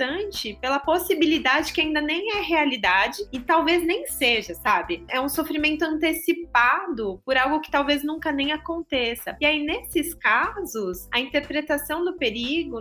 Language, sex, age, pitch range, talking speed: Portuguese, female, 20-39, 225-295 Hz, 145 wpm